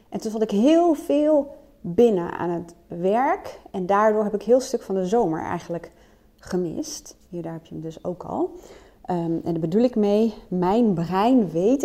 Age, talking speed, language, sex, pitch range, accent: 30-49, 185 wpm, Dutch, female, 175-240 Hz, Dutch